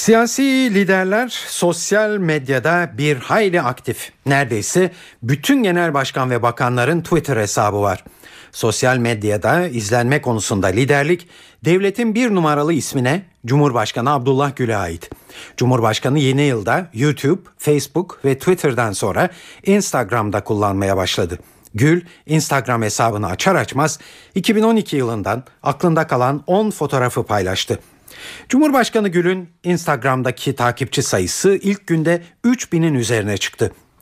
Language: Turkish